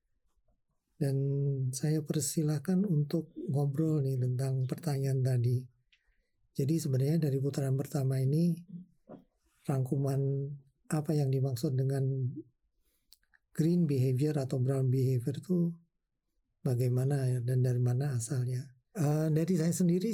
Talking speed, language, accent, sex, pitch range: 100 wpm, Indonesian, native, male, 125-150 Hz